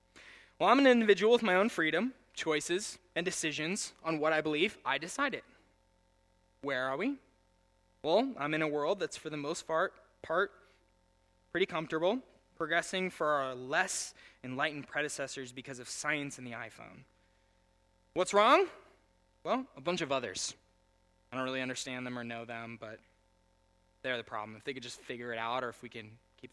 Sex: male